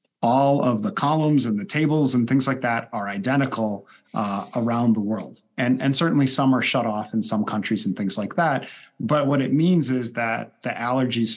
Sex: male